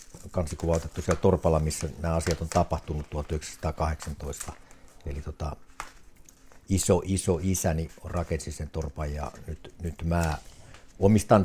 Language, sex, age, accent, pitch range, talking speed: Finnish, male, 60-79, native, 75-90 Hz, 115 wpm